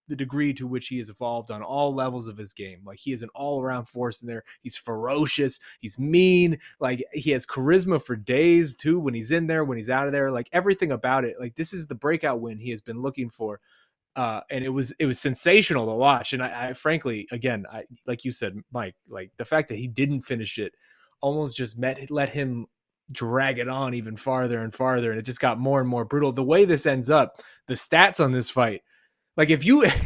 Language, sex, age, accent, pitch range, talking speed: English, male, 20-39, American, 125-155 Hz, 230 wpm